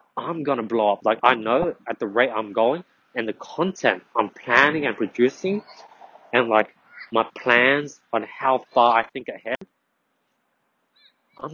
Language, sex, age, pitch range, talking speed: English, male, 20-39, 110-155 Hz, 160 wpm